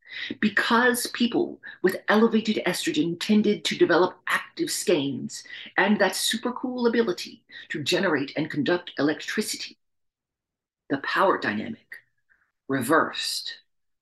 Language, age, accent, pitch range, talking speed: English, 50-69, American, 165-225 Hz, 105 wpm